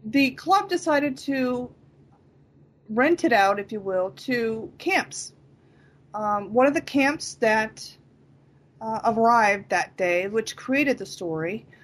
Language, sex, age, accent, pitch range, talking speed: English, female, 30-49, American, 210-270 Hz, 130 wpm